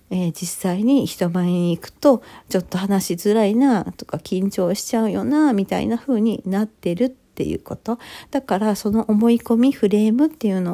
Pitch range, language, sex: 180-245 Hz, Japanese, female